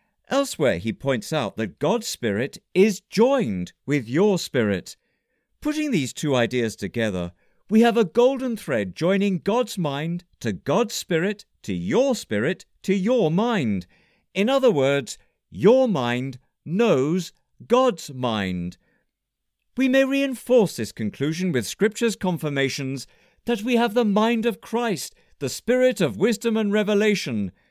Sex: male